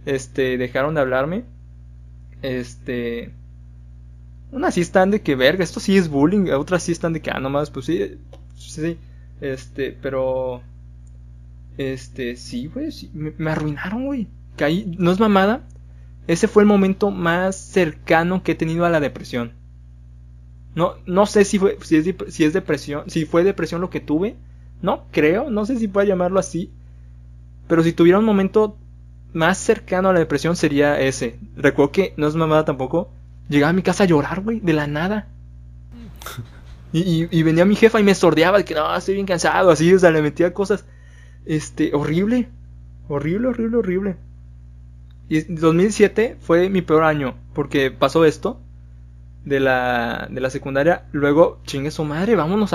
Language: Spanish